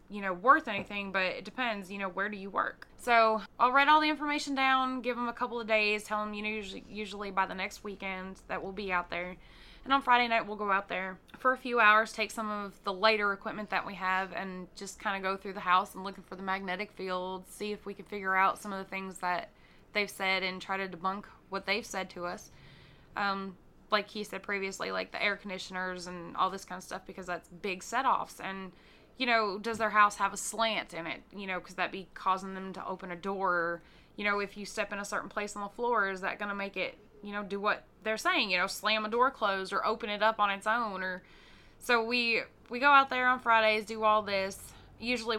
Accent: American